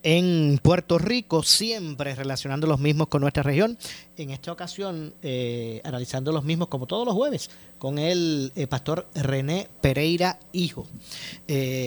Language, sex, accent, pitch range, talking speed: Spanish, male, American, 135-175 Hz, 145 wpm